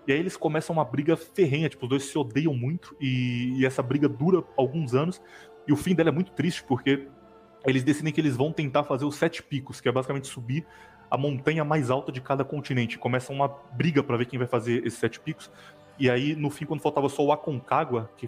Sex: male